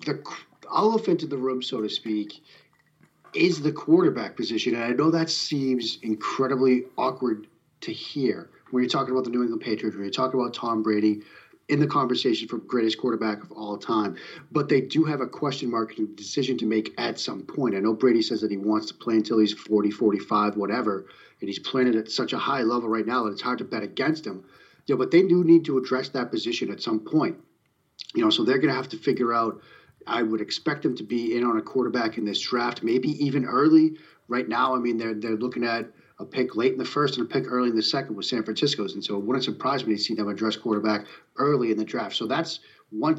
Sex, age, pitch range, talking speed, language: male, 40-59, 110-135 Hz, 235 wpm, English